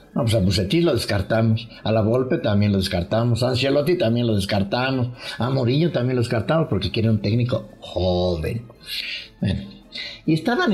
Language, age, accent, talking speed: English, 60-79, Mexican, 160 wpm